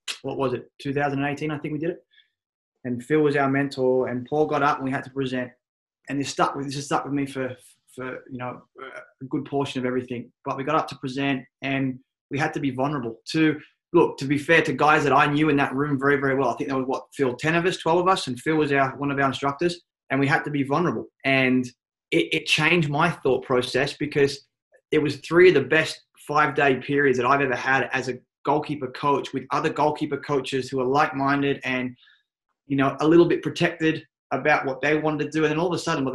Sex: male